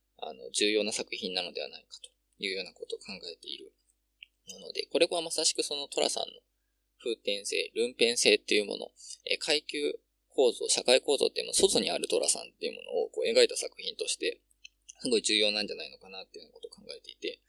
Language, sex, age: Japanese, male, 20-39